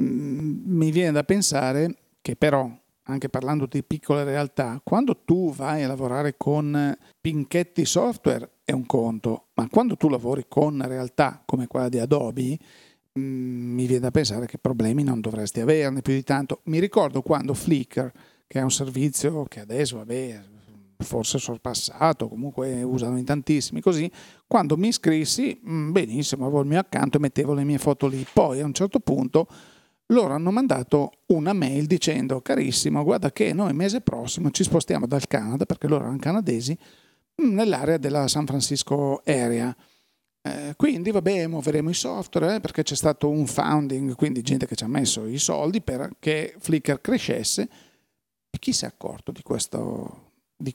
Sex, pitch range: male, 130-160 Hz